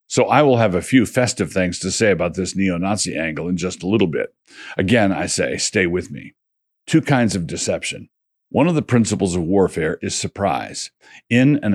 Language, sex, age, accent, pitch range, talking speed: English, male, 50-69, American, 90-110 Hz, 200 wpm